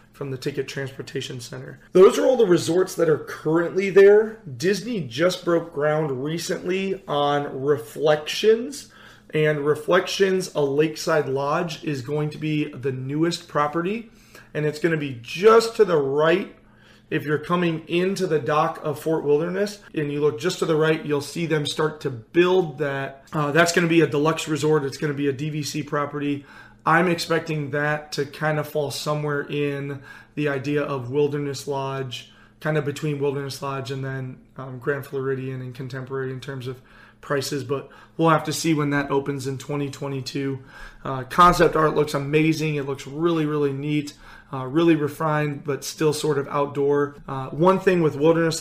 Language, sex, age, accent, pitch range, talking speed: English, male, 30-49, American, 140-160 Hz, 175 wpm